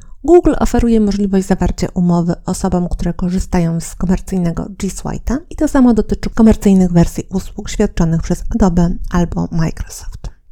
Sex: female